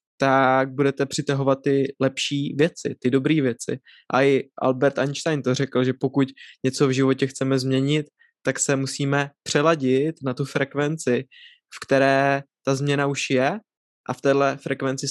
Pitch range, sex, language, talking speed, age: 130-140 Hz, male, Czech, 155 wpm, 20-39